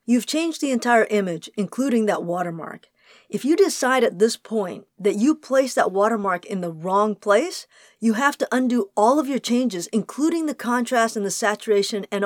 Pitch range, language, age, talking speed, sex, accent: 200-265 Hz, English, 50-69, 185 wpm, female, American